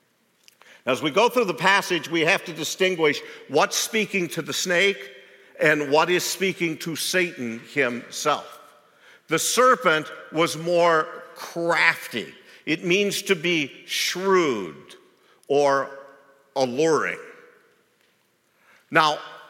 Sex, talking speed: male, 110 wpm